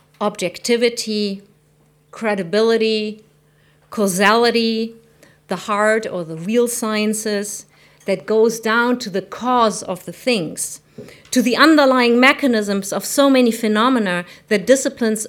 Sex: female